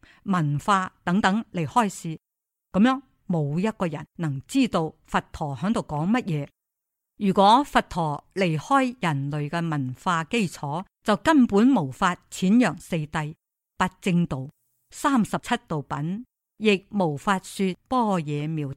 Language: Chinese